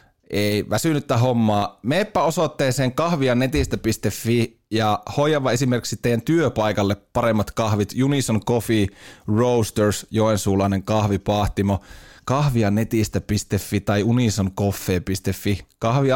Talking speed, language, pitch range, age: 80 wpm, Finnish, 100-130 Hz, 20-39